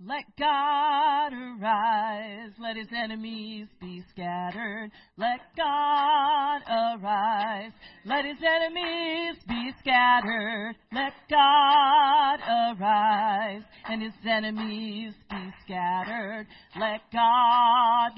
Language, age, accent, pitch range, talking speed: English, 40-59, American, 215-285 Hz, 85 wpm